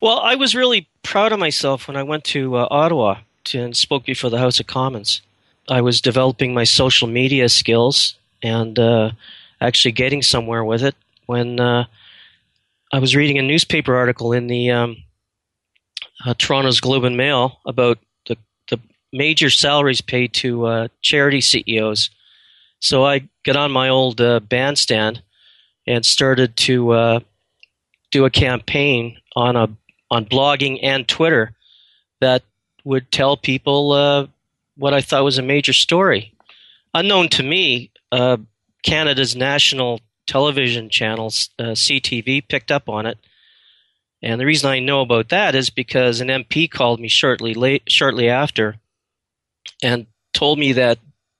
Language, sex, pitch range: English, male, 115-140 Hz